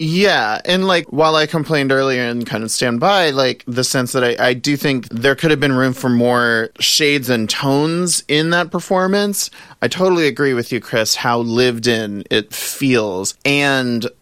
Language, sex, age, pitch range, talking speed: English, male, 30-49, 110-130 Hz, 190 wpm